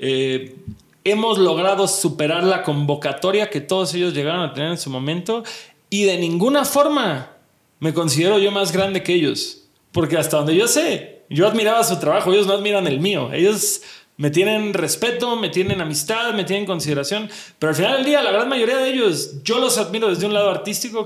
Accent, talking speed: Mexican, 190 wpm